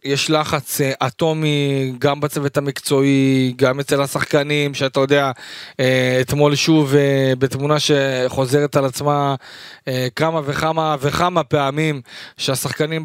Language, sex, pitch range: Hebrew, male, 135-155 Hz